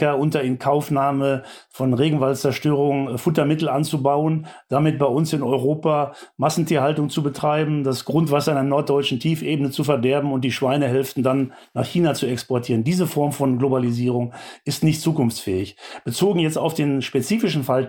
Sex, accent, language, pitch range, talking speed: male, German, German, 140-170 Hz, 145 wpm